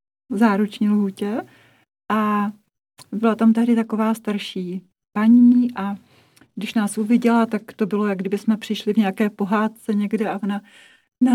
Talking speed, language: 150 wpm, Czech